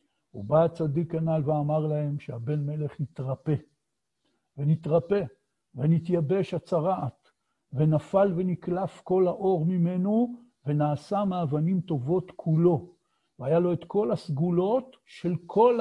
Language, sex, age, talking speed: Hebrew, male, 60-79, 105 wpm